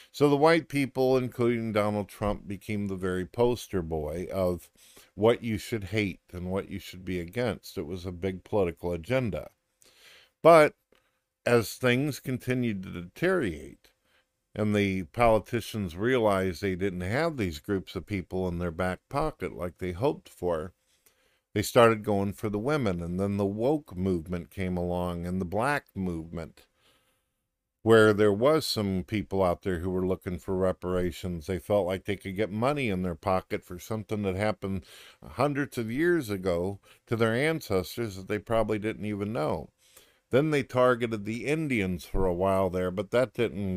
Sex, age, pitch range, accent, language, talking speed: male, 50-69, 95-115 Hz, American, English, 165 wpm